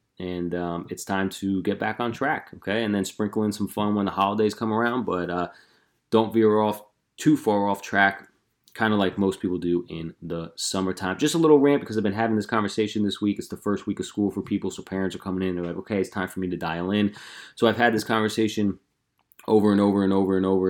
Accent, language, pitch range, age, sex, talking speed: American, English, 95-110 Hz, 20-39, male, 250 wpm